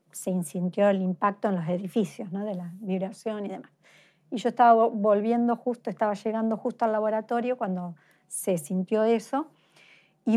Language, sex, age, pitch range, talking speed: Spanish, female, 40-59, 190-225 Hz, 160 wpm